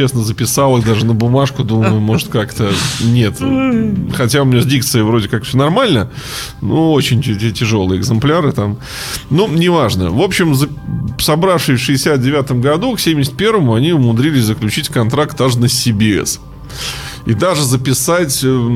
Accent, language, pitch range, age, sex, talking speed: native, Russian, 110-140 Hz, 20-39, male, 140 wpm